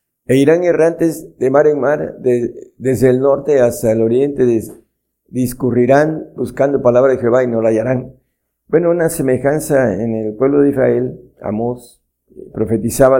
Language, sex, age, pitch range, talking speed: Spanish, male, 50-69, 115-135 Hz, 155 wpm